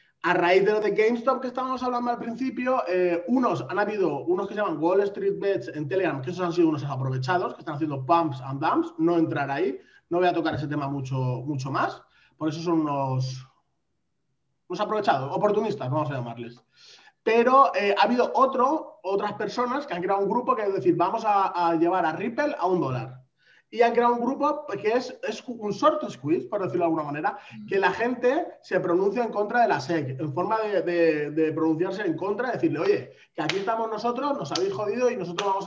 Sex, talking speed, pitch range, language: male, 215 wpm, 160-235 Hz, Spanish